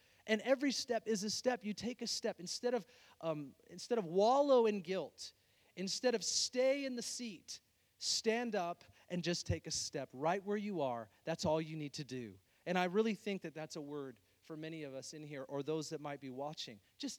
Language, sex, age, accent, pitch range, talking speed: English, male, 40-59, American, 145-200 Hz, 215 wpm